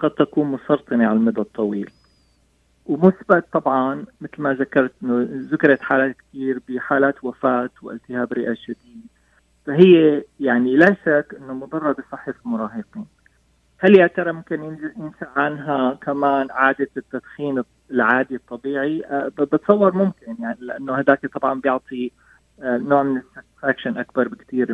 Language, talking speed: Arabic, 120 wpm